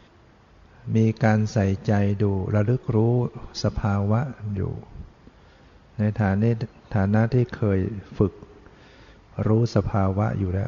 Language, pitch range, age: Thai, 100-115 Hz, 60-79